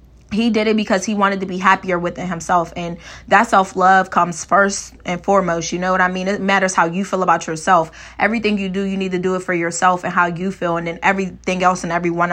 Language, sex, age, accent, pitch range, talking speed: English, female, 20-39, American, 175-200 Hz, 245 wpm